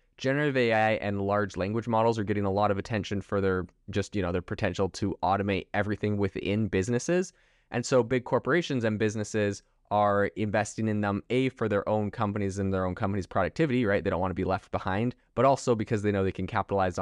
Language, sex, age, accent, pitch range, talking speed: English, male, 20-39, American, 100-120 Hz, 210 wpm